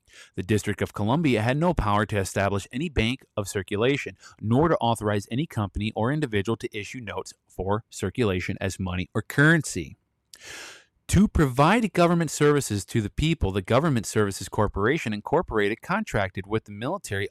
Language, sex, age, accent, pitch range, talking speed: English, male, 30-49, American, 105-140 Hz, 155 wpm